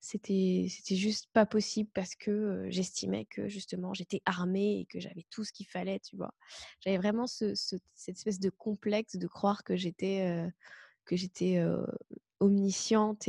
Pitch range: 185-220 Hz